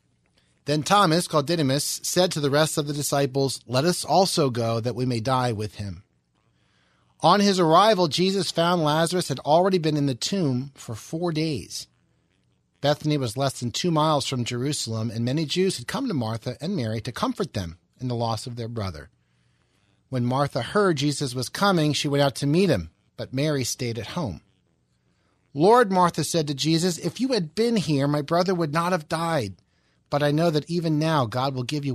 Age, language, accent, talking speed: 40-59, English, American, 195 wpm